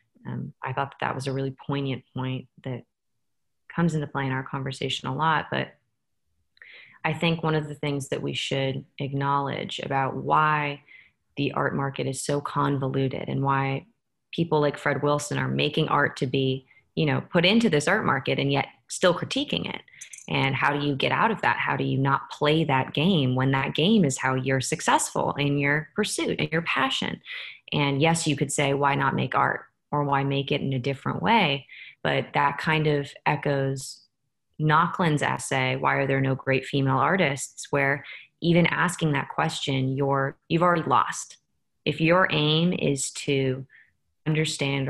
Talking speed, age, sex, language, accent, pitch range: 180 wpm, 20-39, female, English, American, 135-155 Hz